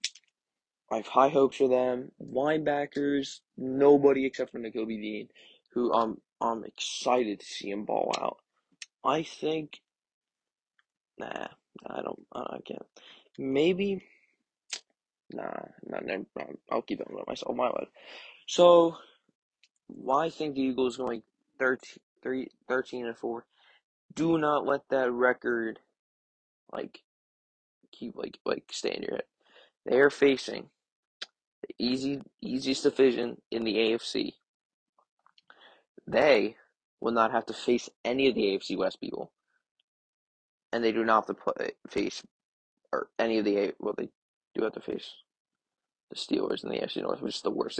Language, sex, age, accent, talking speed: English, male, 20-39, American, 145 wpm